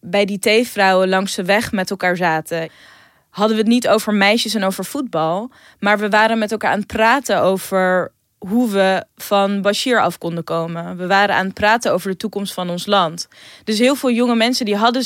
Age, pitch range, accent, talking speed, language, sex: 20-39, 185-225 Hz, Dutch, 205 wpm, Dutch, female